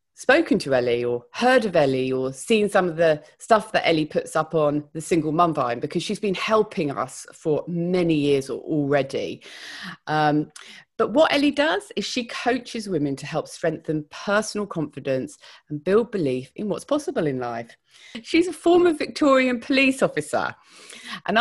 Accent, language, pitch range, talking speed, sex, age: British, English, 150-225 Hz, 170 wpm, female, 30-49